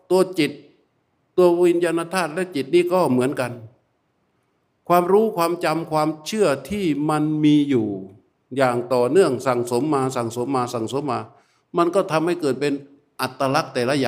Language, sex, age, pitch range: Thai, male, 60-79, 125-170 Hz